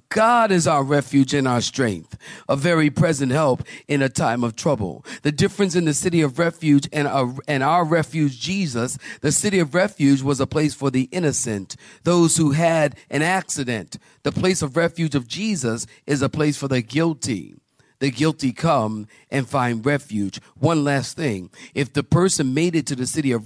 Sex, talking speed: male, 185 wpm